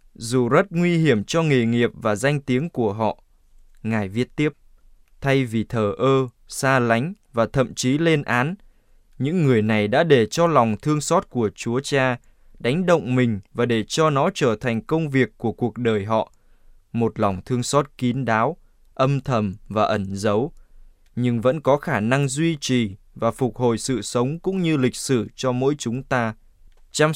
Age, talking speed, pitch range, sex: 20-39, 190 wpm, 115-150 Hz, male